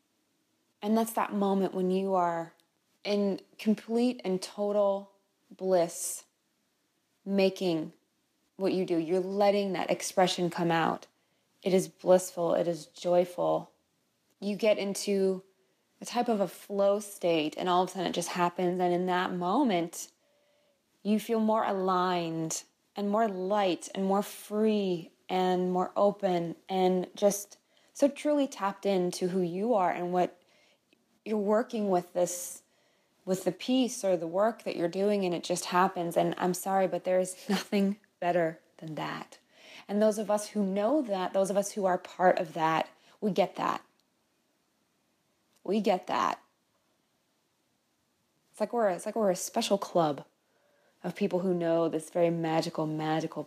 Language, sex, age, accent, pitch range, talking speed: English, female, 20-39, American, 180-205 Hz, 155 wpm